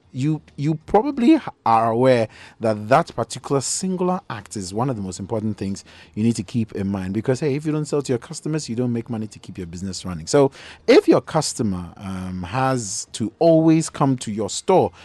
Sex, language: male, English